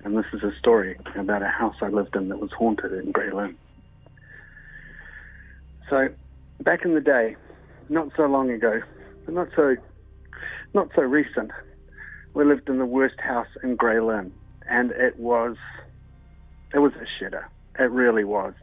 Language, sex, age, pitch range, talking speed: English, male, 40-59, 105-130 Hz, 160 wpm